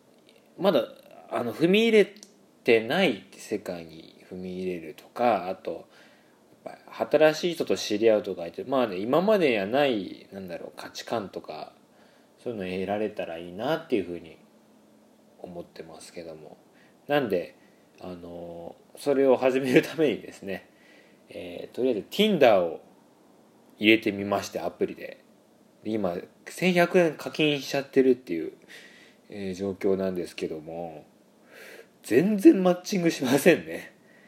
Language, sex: Japanese, male